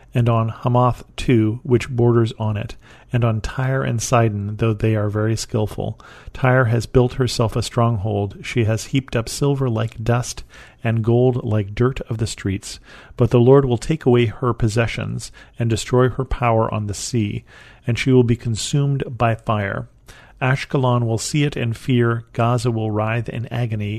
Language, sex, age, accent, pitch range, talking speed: English, male, 40-59, American, 110-125 Hz, 180 wpm